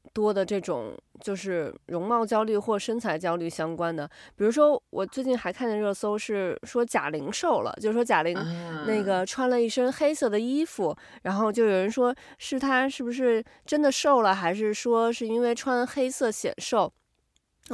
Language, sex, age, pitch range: Chinese, female, 20-39, 195-260 Hz